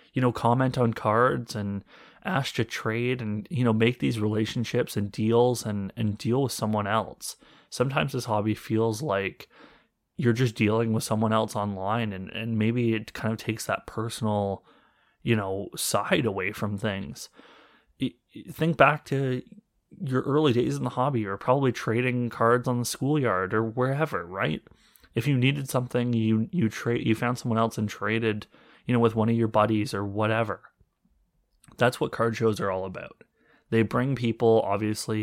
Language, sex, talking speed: English, male, 175 wpm